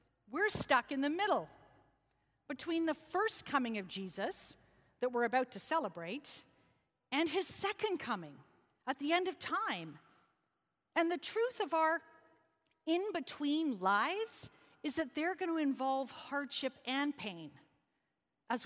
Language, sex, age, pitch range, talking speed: English, female, 50-69, 235-315 Hz, 135 wpm